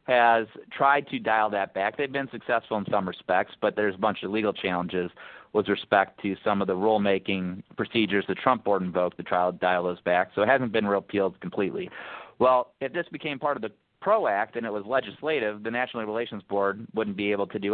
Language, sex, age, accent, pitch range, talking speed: English, male, 30-49, American, 100-120 Hz, 215 wpm